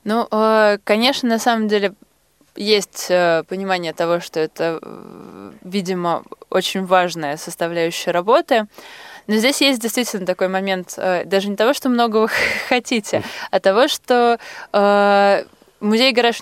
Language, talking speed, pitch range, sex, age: Russian, 115 wpm, 180-220 Hz, female, 20-39